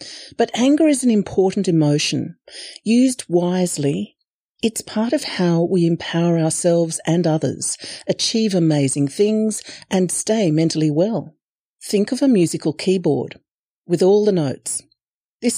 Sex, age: female, 40-59